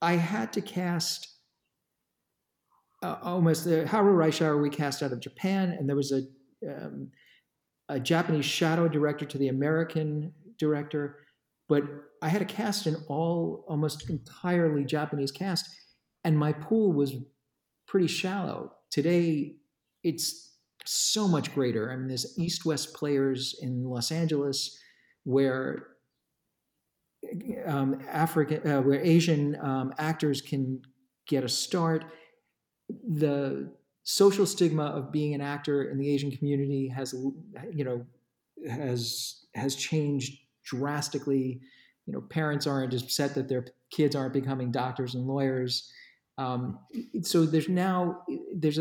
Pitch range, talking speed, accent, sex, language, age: 135-165 Hz, 130 wpm, American, male, English, 50-69